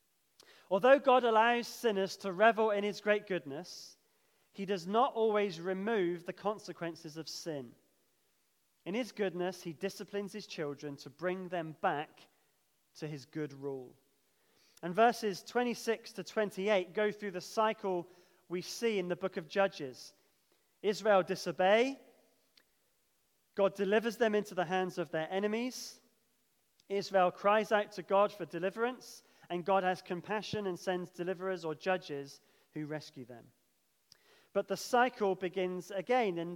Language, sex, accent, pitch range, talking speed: English, male, British, 165-215 Hz, 140 wpm